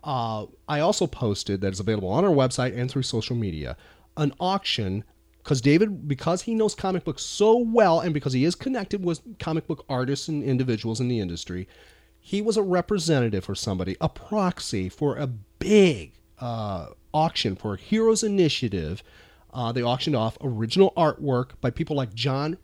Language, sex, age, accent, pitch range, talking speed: English, male, 40-59, American, 105-155 Hz, 175 wpm